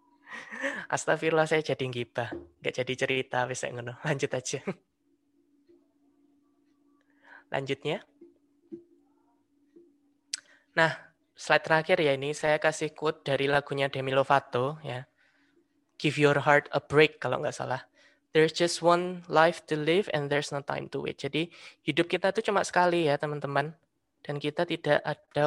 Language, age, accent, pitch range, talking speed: Indonesian, 20-39, native, 140-195 Hz, 135 wpm